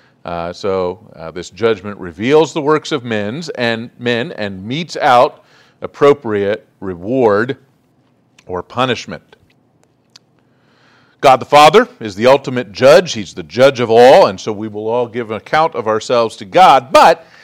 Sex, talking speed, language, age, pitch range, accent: male, 150 wpm, English, 50-69, 110-150 Hz, American